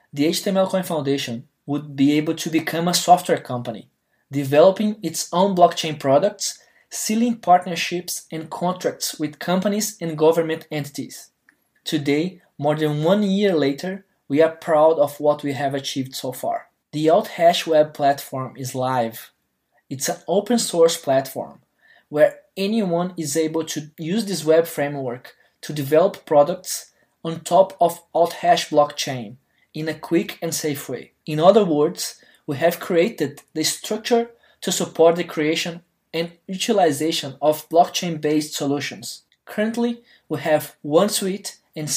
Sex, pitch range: male, 145-180 Hz